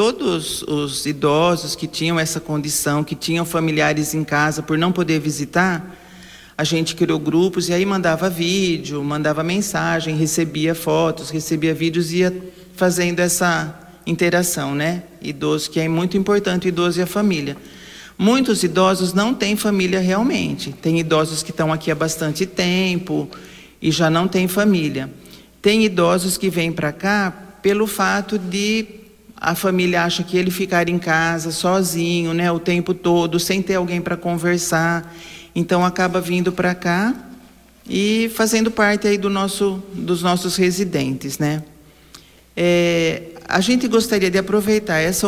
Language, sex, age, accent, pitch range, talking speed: Portuguese, male, 40-59, Brazilian, 160-195 Hz, 150 wpm